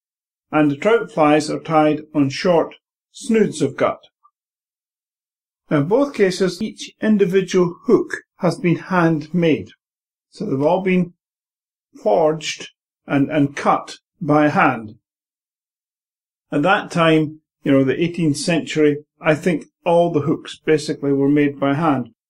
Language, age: English, 50-69